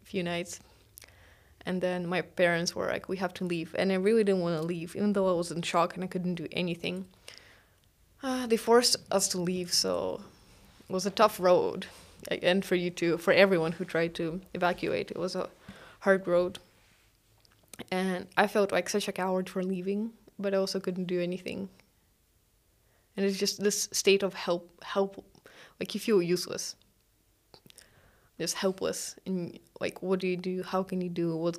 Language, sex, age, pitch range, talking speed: Ukrainian, female, 20-39, 165-195 Hz, 185 wpm